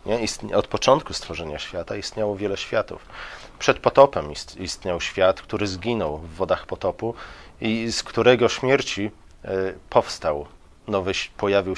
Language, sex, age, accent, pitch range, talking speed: Polish, male, 40-59, native, 95-110 Hz, 110 wpm